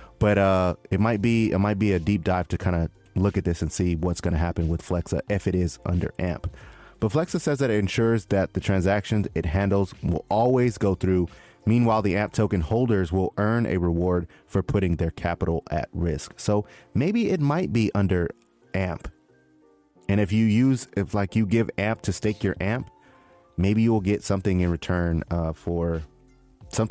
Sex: male